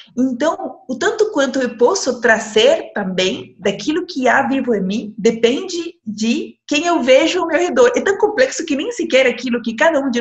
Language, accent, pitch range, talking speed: Portuguese, Brazilian, 210-275 Hz, 195 wpm